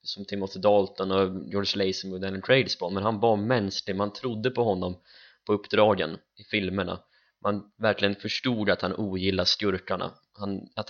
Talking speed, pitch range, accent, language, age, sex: 145 wpm, 95-110 Hz, native, Swedish, 20-39, male